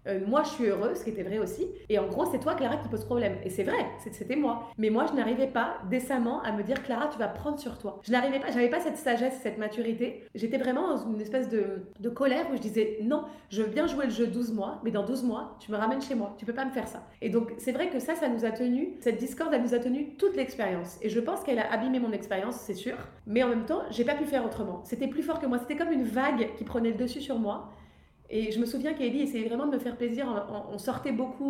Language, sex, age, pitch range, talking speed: French, female, 30-49, 220-270 Hz, 290 wpm